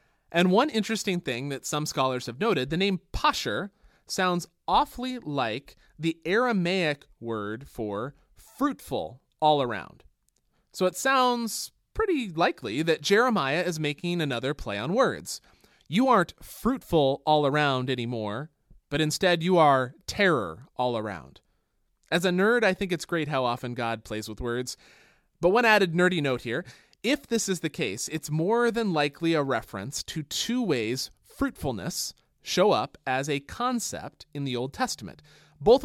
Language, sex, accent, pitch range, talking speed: English, male, American, 135-195 Hz, 155 wpm